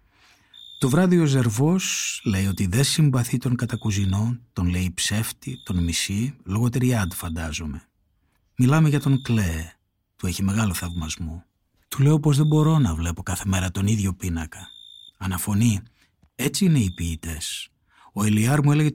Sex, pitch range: male, 95-135 Hz